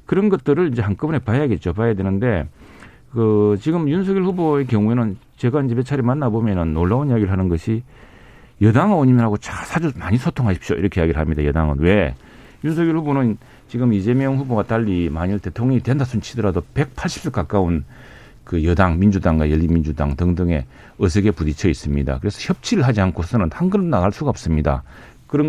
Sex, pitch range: male, 95-135 Hz